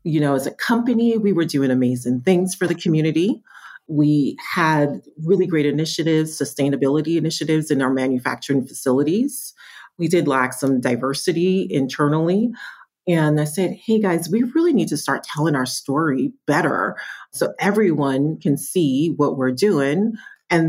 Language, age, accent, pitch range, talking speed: English, 40-59, American, 140-170 Hz, 150 wpm